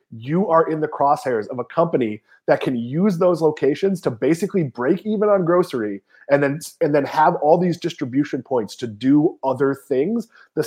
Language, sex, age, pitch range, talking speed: English, male, 30-49, 145-190 Hz, 185 wpm